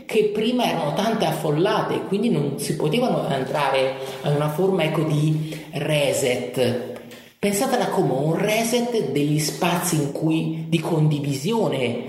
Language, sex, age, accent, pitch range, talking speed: Italian, male, 30-49, native, 145-200 Hz, 130 wpm